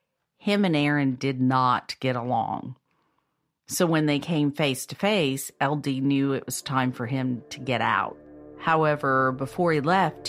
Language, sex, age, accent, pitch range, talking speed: English, female, 50-69, American, 135-160 Hz, 165 wpm